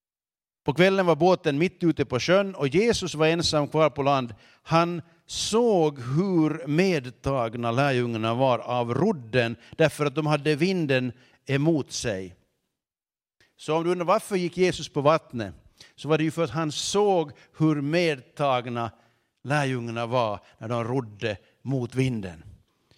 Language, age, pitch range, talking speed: Swedish, 50-69, 125-160 Hz, 145 wpm